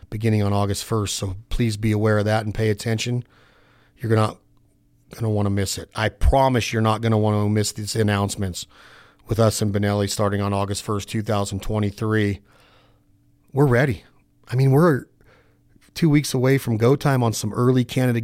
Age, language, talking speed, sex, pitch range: 40-59, English, 185 wpm, male, 110-135 Hz